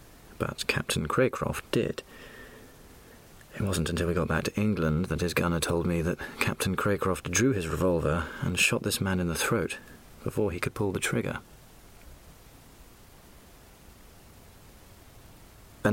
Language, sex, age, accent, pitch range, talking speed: English, male, 40-59, British, 80-110 Hz, 140 wpm